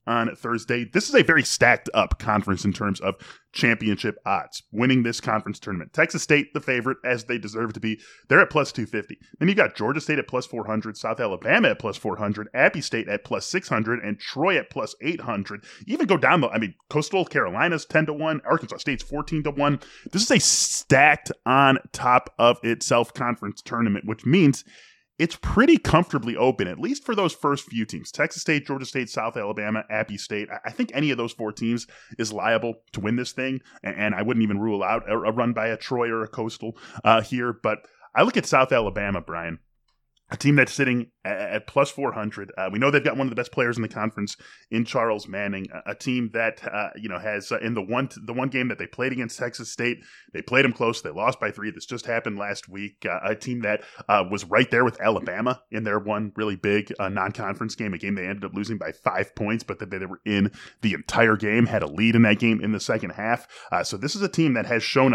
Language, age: English, 20-39